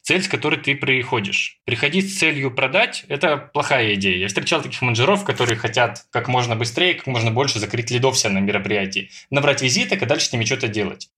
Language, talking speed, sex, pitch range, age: Russian, 195 wpm, male, 115-155 Hz, 20-39